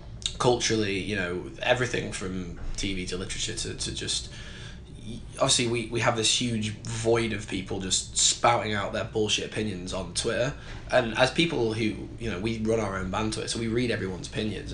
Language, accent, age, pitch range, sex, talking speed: German, British, 10-29, 105-120 Hz, male, 185 wpm